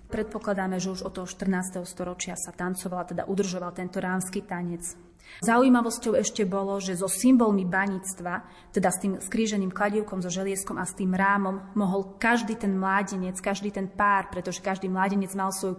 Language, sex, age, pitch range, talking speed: Slovak, female, 30-49, 190-215 Hz, 165 wpm